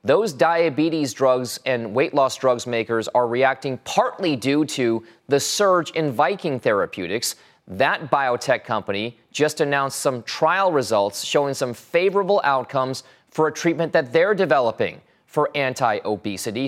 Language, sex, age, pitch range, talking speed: English, male, 30-49, 115-150 Hz, 135 wpm